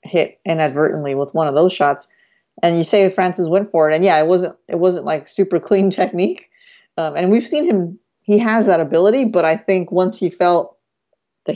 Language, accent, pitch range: English, American, 160-195 Hz